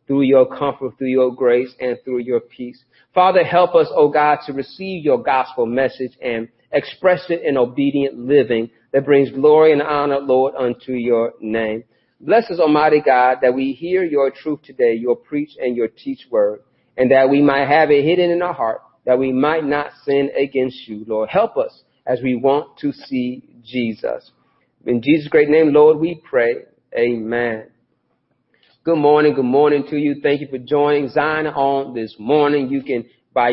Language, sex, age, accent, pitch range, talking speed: English, male, 40-59, American, 125-150 Hz, 185 wpm